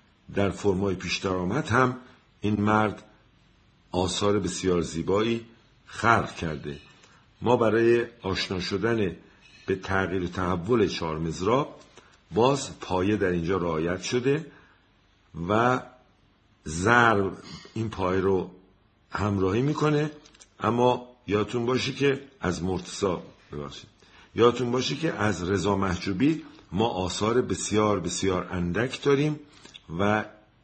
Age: 50-69